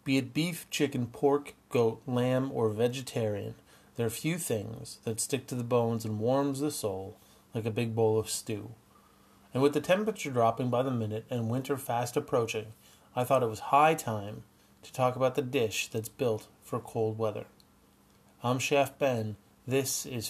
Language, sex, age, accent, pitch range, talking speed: English, male, 30-49, American, 110-135 Hz, 180 wpm